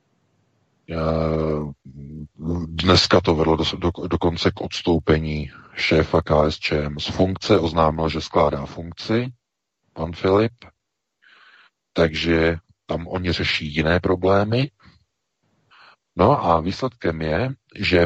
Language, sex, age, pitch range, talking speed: Czech, male, 50-69, 80-95 Hz, 90 wpm